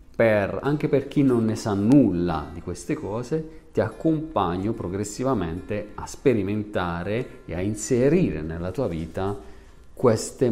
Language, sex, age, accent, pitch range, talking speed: Italian, male, 40-59, native, 85-105 Hz, 125 wpm